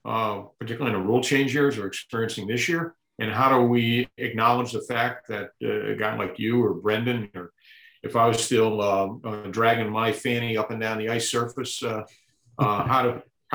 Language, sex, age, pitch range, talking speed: English, male, 50-69, 110-125 Hz, 195 wpm